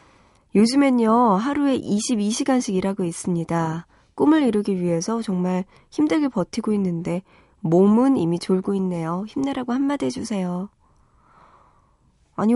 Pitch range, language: 180-250 Hz, Korean